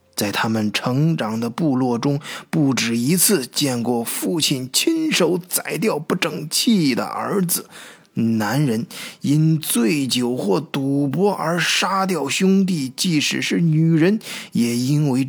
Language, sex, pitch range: Chinese, male, 125-205 Hz